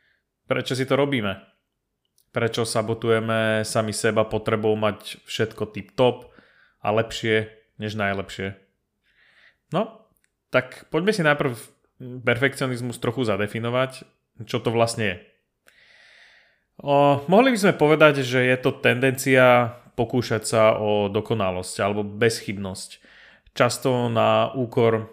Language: Slovak